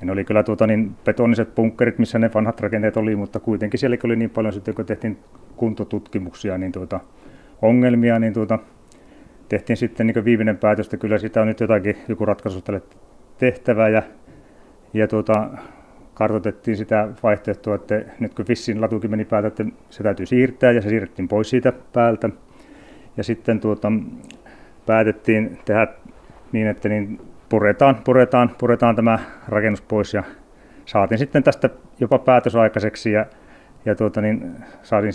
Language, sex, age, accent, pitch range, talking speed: Finnish, male, 30-49, native, 105-115 Hz, 155 wpm